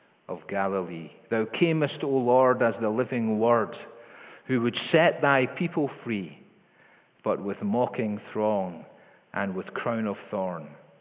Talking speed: 135 wpm